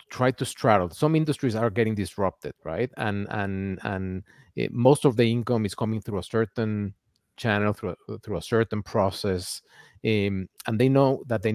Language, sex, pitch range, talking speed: English, male, 100-125 Hz, 175 wpm